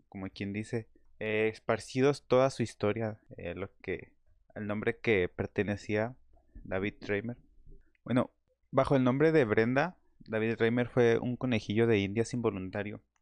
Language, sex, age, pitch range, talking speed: Spanish, male, 20-39, 105-125 Hz, 140 wpm